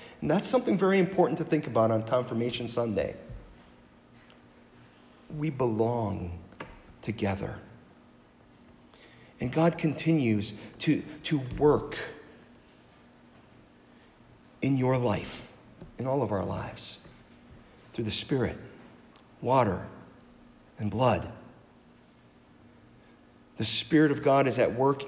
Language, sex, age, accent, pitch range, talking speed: English, male, 50-69, American, 110-145 Hz, 100 wpm